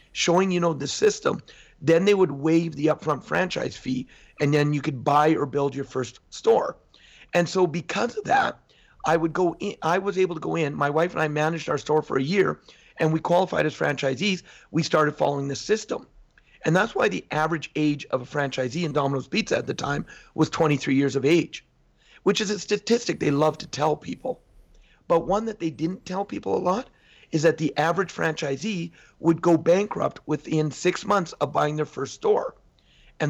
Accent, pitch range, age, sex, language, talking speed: American, 150-190 Hz, 40-59, male, Swedish, 205 wpm